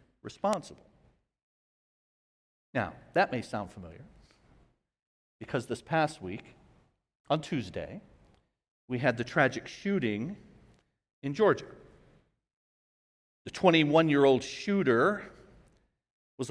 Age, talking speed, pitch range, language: 50-69, 90 wpm, 145-195 Hz, English